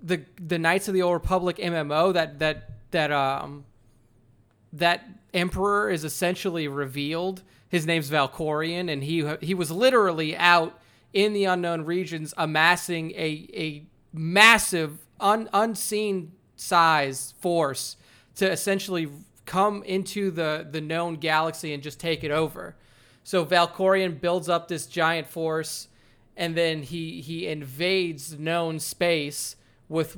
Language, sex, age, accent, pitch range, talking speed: English, male, 30-49, American, 140-175 Hz, 130 wpm